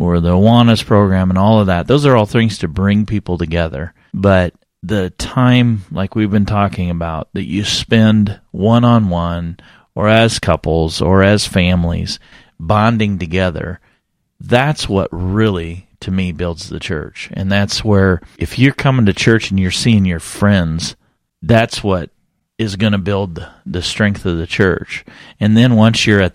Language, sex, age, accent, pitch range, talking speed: English, male, 40-59, American, 85-105 Hz, 165 wpm